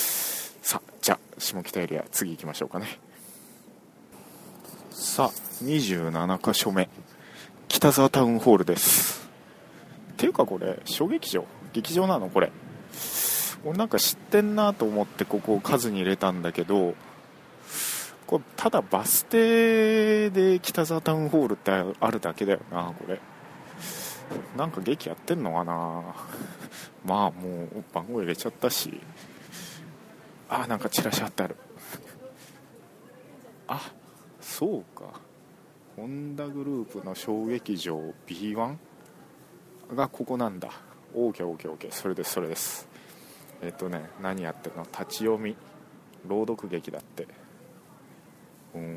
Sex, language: male, Japanese